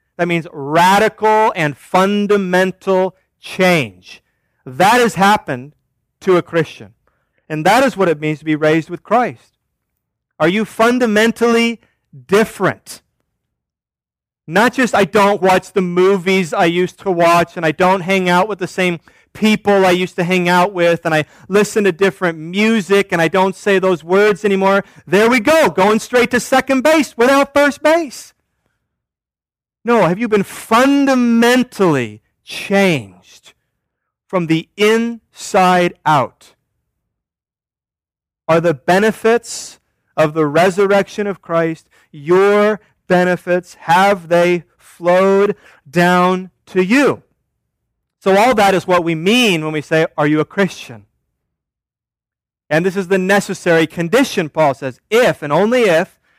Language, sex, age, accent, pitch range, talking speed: English, male, 40-59, American, 165-205 Hz, 135 wpm